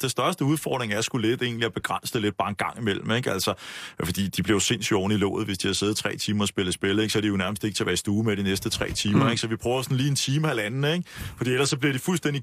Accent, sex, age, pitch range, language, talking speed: native, male, 30-49, 115-160 Hz, Danish, 325 wpm